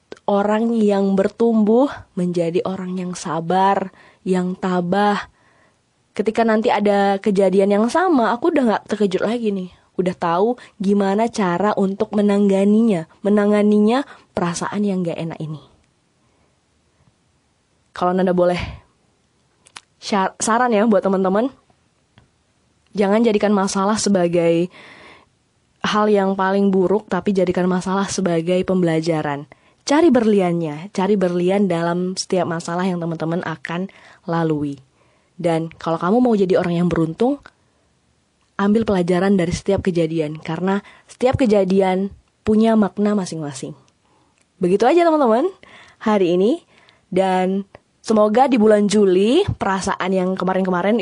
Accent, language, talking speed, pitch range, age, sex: native, Indonesian, 115 wpm, 180-225 Hz, 20-39, female